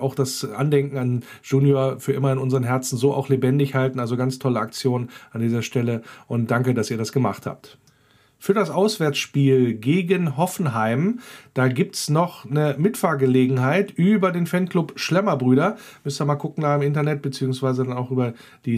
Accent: German